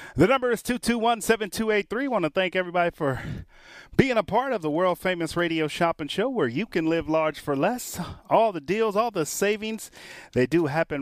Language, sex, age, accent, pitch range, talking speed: English, male, 30-49, American, 155-220 Hz, 190 wpm